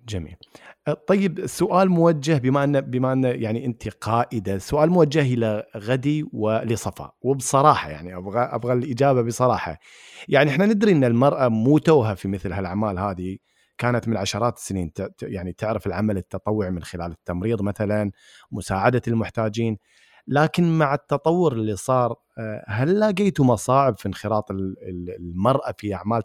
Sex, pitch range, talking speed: male, 105-135 Hz, 135 wpm